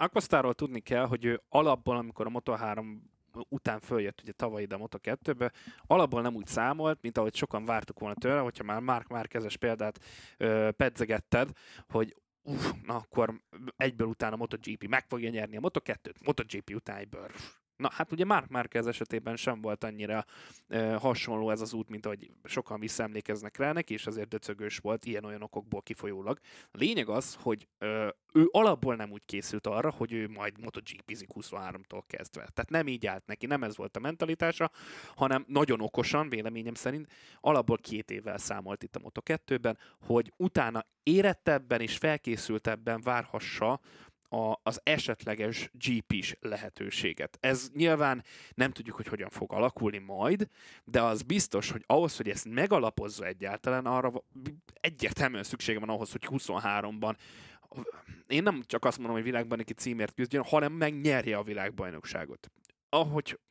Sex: male